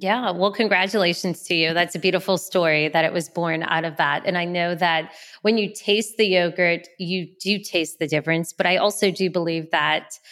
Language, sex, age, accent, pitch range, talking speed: English, female, 20-39, American, 170-200 Hz, 210 wpm